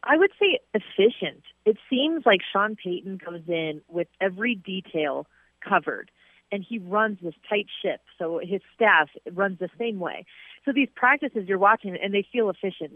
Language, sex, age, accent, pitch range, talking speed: English, female, 30-49, American, 175-220 Hz, 170 wpm